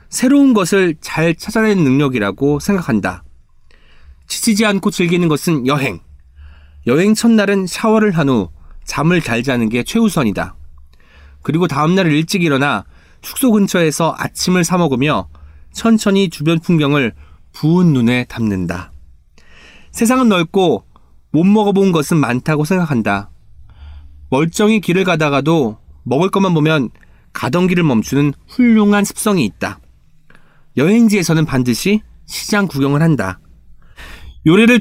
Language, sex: Korean, male